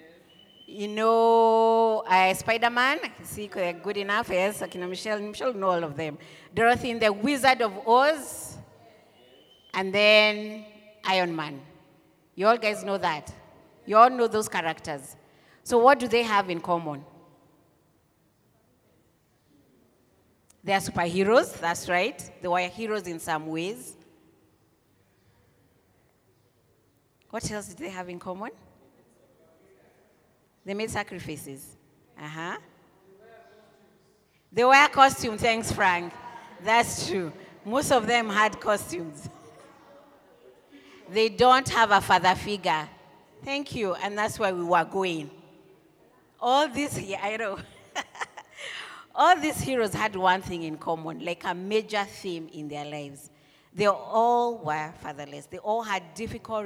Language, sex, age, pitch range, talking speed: English, female, 30-49, 160-220 Hz, 125 wpm